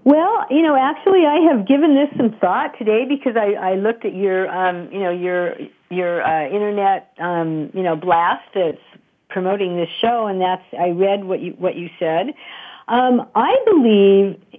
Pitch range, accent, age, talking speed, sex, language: 175-235 Hz, American, 50-69, 180 wpm, female, English